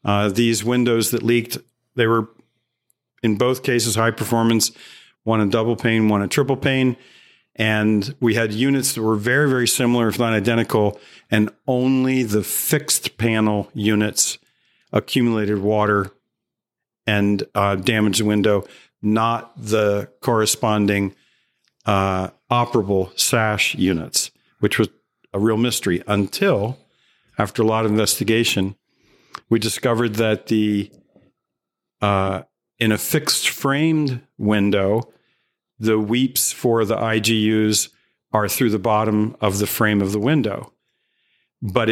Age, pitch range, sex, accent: 50-69, 105-120 Hz, male, American